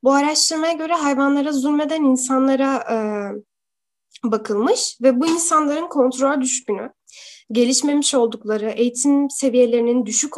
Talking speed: 105 wpm